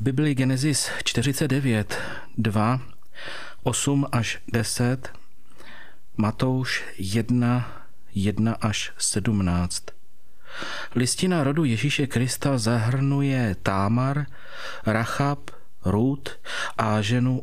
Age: 40-59